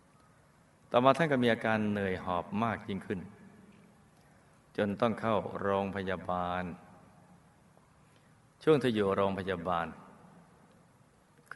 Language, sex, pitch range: Thai, male, 90-110 Hz